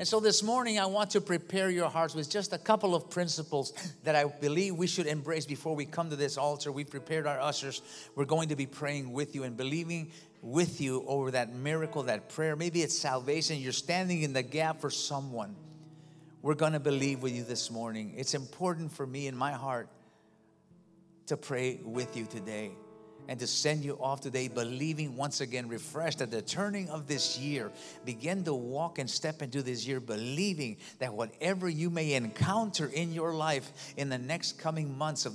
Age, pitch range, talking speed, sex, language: 50-69, 130-165 Hz, 200 wpm, male, English